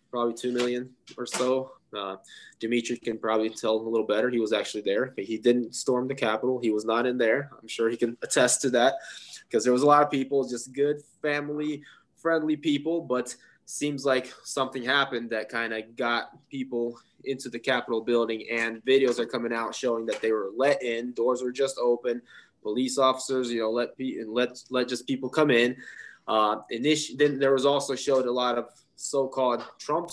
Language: English